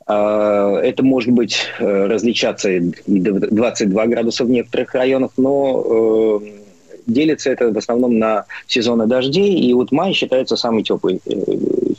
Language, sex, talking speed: Russian, male, 115 wpm